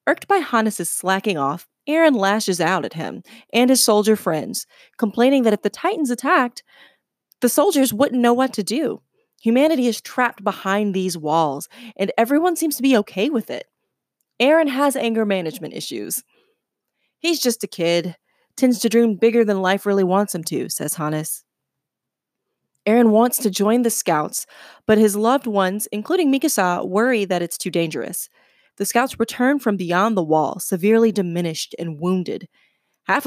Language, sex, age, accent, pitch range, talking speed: English, female, 20-39, American, 185-245 Hz, 165 wpm